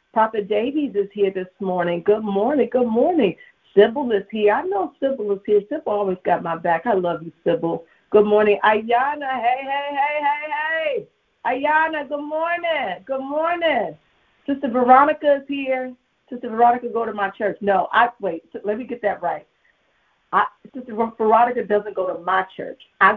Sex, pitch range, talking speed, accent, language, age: female, 200-270 Hz, 175 wpm, American, English, 40-59